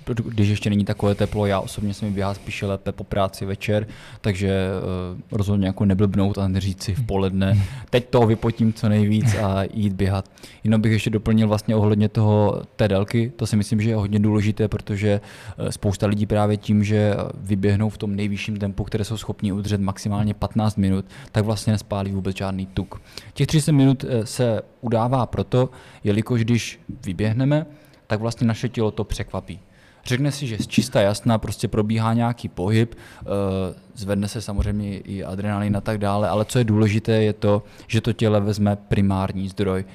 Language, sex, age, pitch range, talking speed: Czech, male, 20-39, 100-115 Hz, 175 wpm